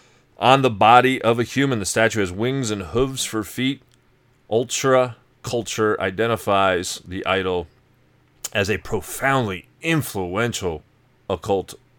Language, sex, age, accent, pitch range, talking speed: English, male, 30-49, American, 90-115 Hz, 120 wpm